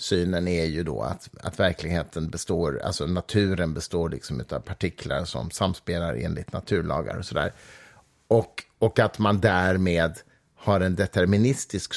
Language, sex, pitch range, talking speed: Swedish, male, 85-115 Hz, 140 wpm